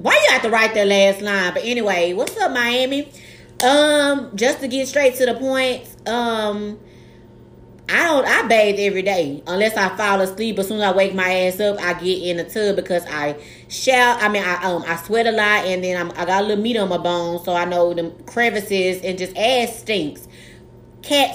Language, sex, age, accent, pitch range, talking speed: English, female, 30-49, American, 175-225 Hz, 215 wpm